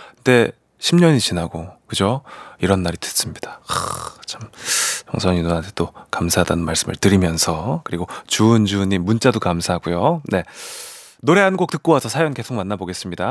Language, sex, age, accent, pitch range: Korean, male, 30-49, native, 100-165 Hz